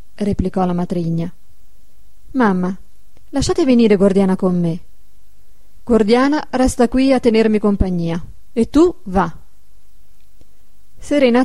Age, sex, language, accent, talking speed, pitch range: 30-49, female, Italian, native, 100 wpm, 175-255 Hz